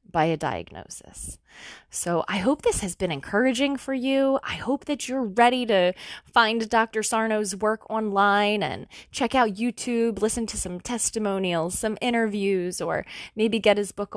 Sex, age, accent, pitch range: female, 20-39, American, 165-230 Hz